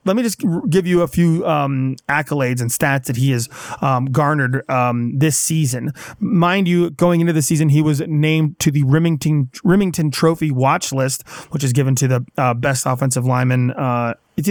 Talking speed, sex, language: 190 wpm, male, English